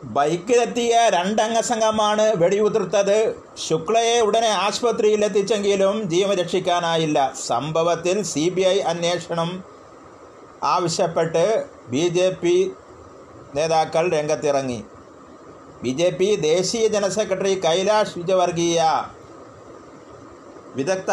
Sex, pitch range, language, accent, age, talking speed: male, 170-210 Hz, Malayalam, native, 30-49, 80 wpm